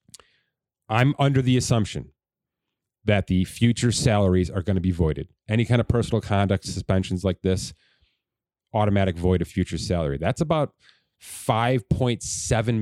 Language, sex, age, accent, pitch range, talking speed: English, male, 30-49, American, 95-115 Hz, 135 wpm